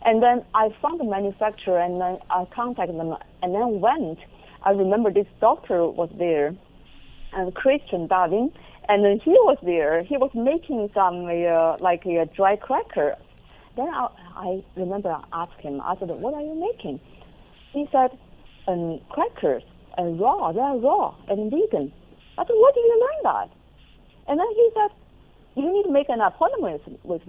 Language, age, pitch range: English, 50-69, 185-250 Hz